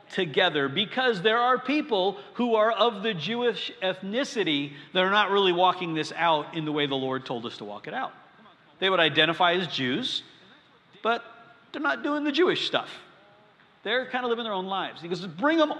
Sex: male